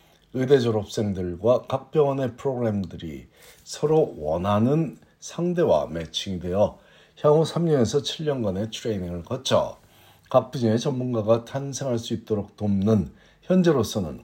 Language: Korean